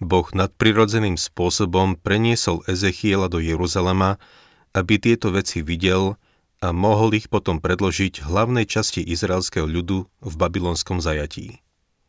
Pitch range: 85-105 Hz